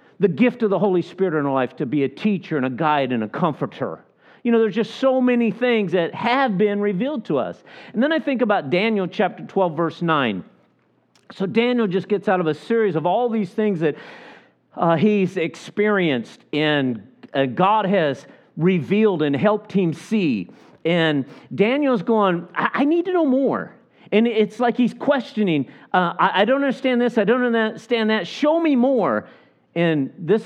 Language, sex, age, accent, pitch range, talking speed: English, male, 50-69, American, 145-215 Hz, 190 wpm